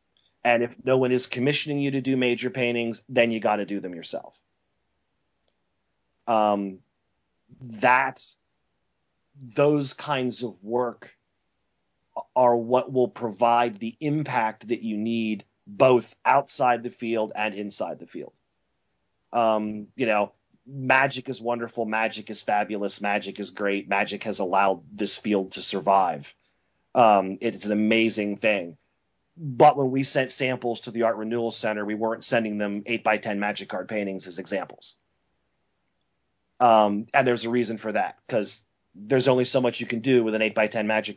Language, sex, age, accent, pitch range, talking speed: English, male, 30-49, American, 105-125 Hz, 150 wpm